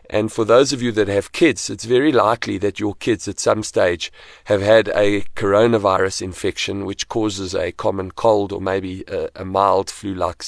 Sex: male